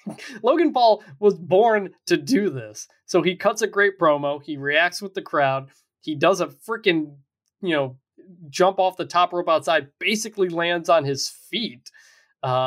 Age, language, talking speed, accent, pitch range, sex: 20-39, English, 165 wpm, American, 135-190 Hz, male